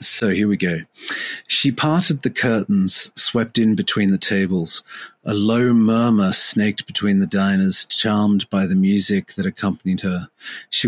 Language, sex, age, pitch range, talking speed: English, male, 40-59, 95-110 Hz, 155 wpm